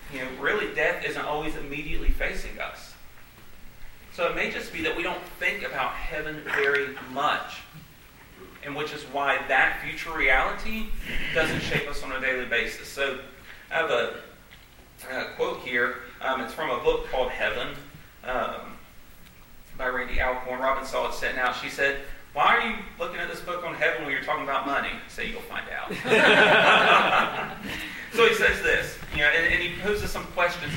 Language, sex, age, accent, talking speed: English, male, 30-49, American, 175 wpm